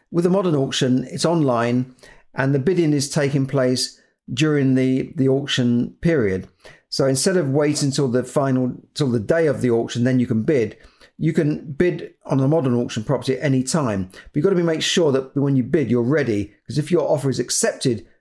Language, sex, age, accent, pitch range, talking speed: English, male, 50-69, British, 125-150 Hz, 210 wpm